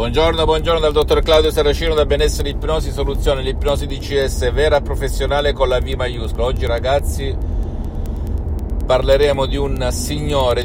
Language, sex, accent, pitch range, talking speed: Italian, male, native, 75-105 Hz, 140 wpm